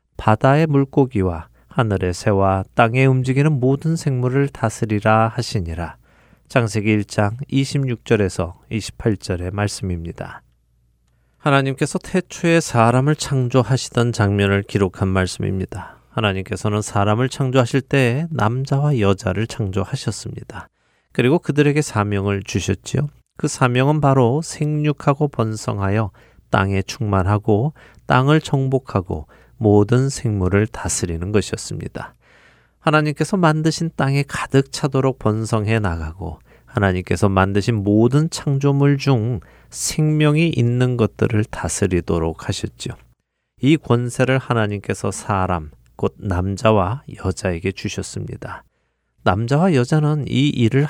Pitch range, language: 100-135 Hz, Korean